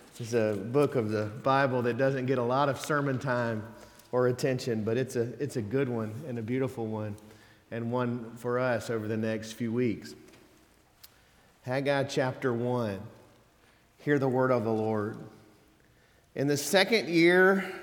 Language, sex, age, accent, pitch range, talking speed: English, male, 40-59, American, 115-155 Hz, 160 wpm